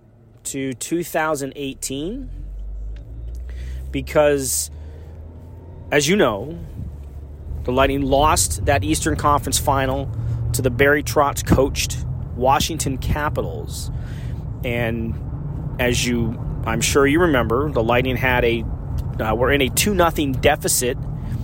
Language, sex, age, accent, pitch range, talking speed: English, male, 30-49, American, 110-145 Hz, 105 wpm